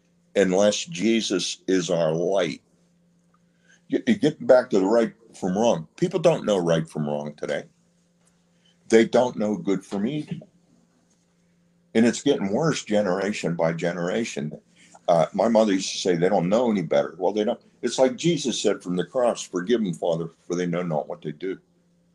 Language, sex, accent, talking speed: English, male, American, 170 wpm